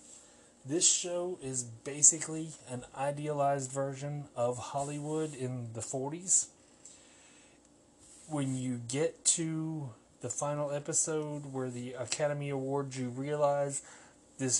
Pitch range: 125-145 Hz